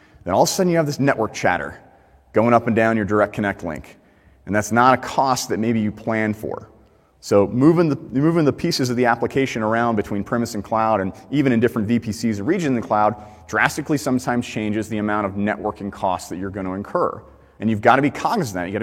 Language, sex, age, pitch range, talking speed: English, male, 30-49, 100-125 Hz, 235 wpm